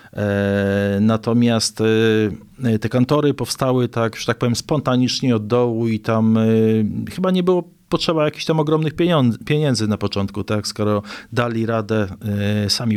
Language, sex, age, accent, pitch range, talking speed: Polish, male, 40-59, native, 110-145 Hz, 130 wpm